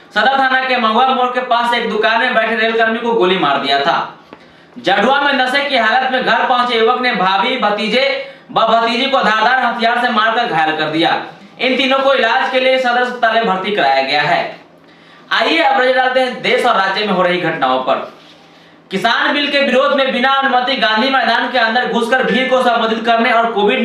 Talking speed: 190 wpm